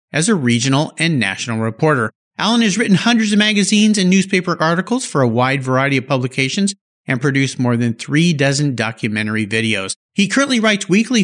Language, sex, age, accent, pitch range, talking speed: English, male, 50-69, American, 130-220 Hz, 175 wpm